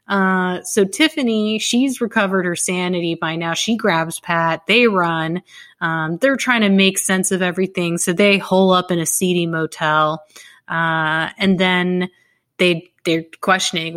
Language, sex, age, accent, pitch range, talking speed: English, female, 30-49, American, 165-205 Hz, 155 wpm